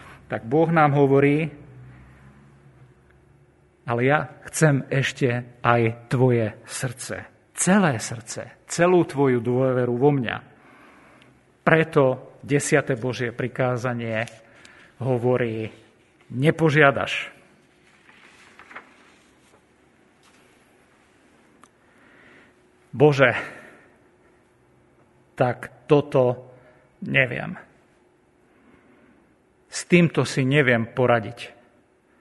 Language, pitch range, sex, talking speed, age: Slovak, 120-150 Hz, male, 60 wpm, 50-69